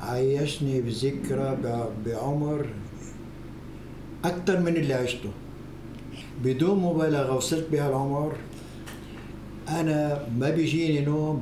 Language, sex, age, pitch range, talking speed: English, male, 60-79, 130-160 Hz, 85 wpm